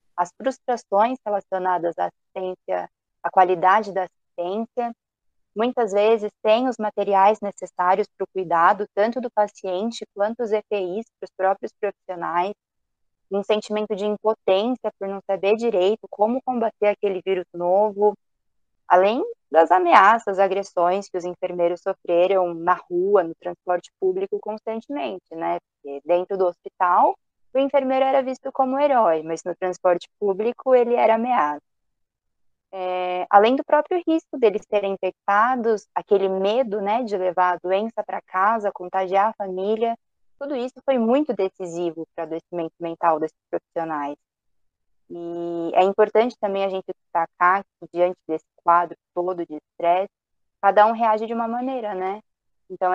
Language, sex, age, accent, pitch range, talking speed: Portuguese, female, 20-39, Brazilian, 180-220 Hz, 145 wpm